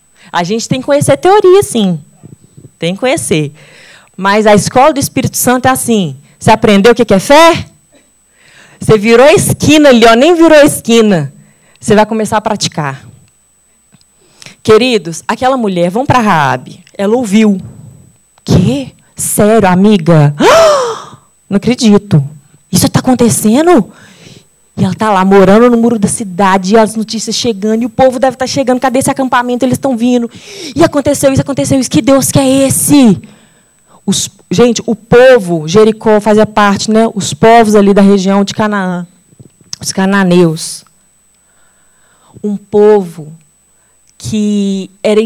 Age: 20-39